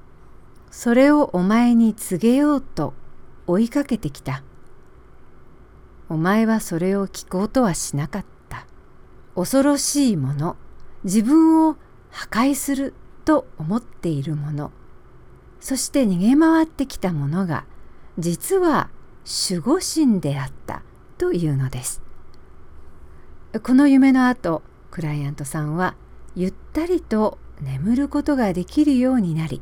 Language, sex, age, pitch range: English, female, 50-69, 155-260 Hz